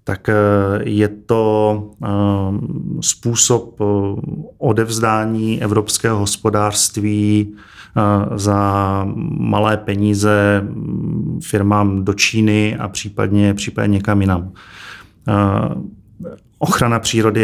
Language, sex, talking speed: Czech, male, 65 wpm